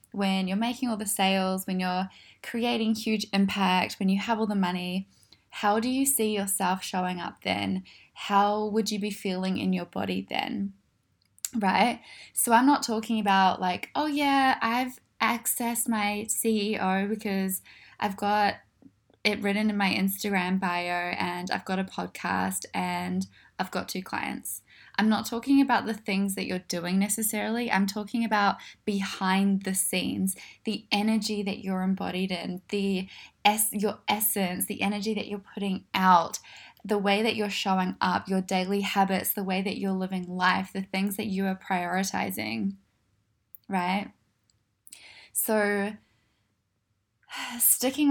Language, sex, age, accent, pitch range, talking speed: English, female, 10-29, Australian, 185-215 Hz, 150 wpm